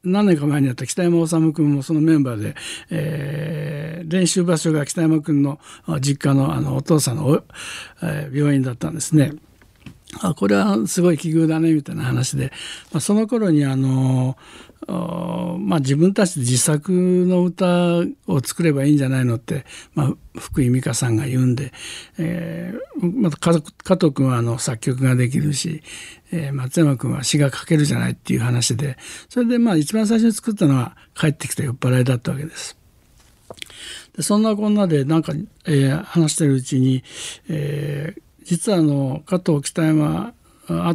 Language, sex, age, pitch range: Japanese, male, 60-79, 140-175 Hz